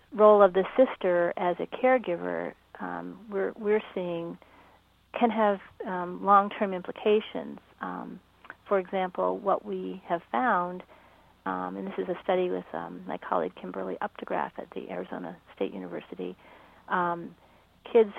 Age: 40-59